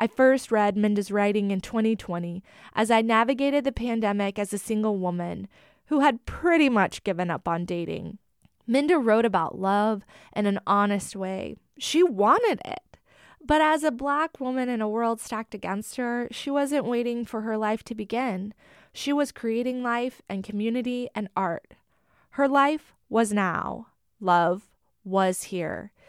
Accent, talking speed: American, 160 wpm